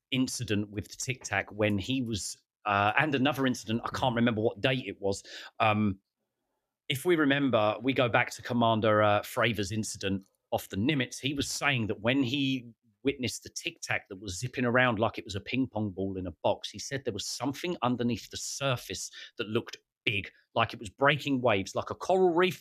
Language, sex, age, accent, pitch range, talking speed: English, male, 30-49, British, 105-130 Hz, 200 wpm